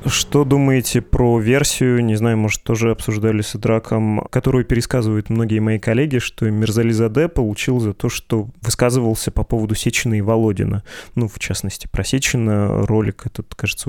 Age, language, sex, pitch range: 20-39, Russian, male, 110-125 Hz